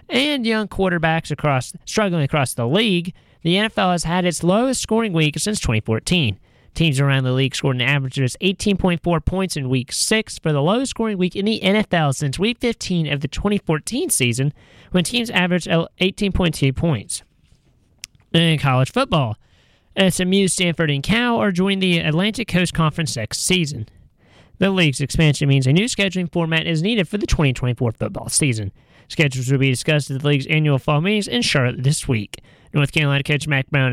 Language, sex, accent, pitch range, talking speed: English, male, American, 140-185 Hz, 175 wpm